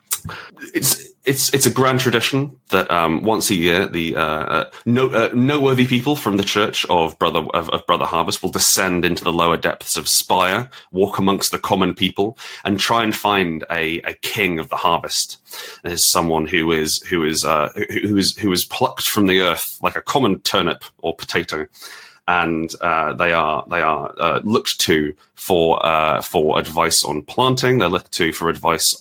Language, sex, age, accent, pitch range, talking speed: English, male, 30-49, British, 80-110 Hz, 185 wpm